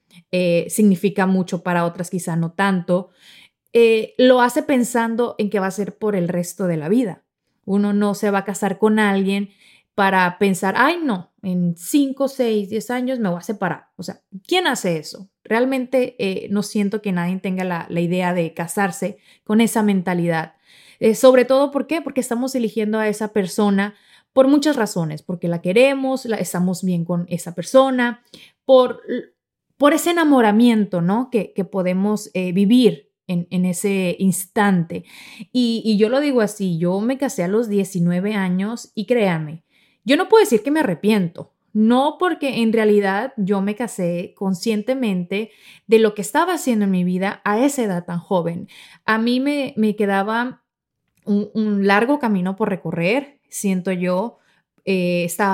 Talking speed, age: 170 wpm, 30-49